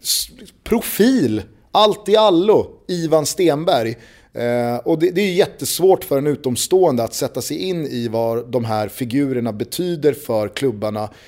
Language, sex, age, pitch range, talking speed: Swedish, male, 30-49, 115-150 Hz, 150 wpm